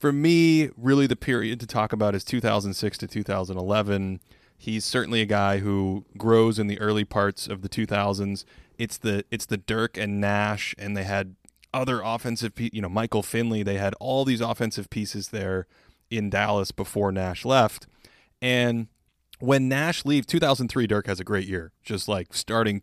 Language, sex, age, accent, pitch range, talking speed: English, male, 20-39, American, 100-120 Hz, 175 wpm